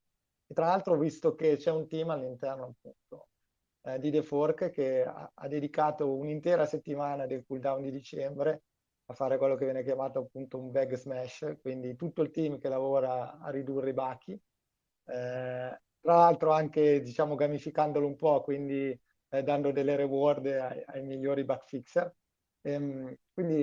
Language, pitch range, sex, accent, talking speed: Italian, 135-155 Hz, male, native, 160 wpm